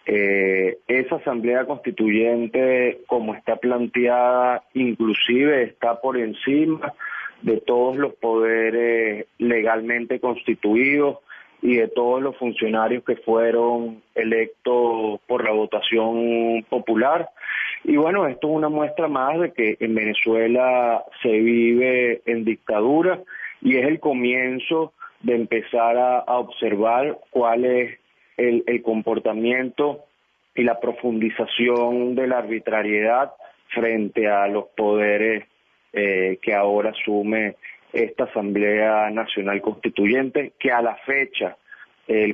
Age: 30-49